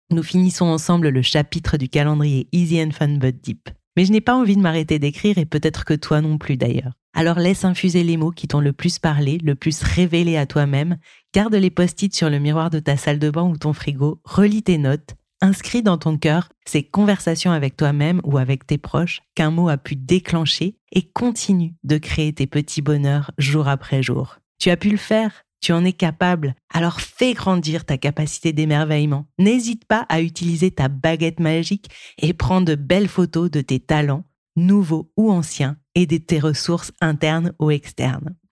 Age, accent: 30-49, French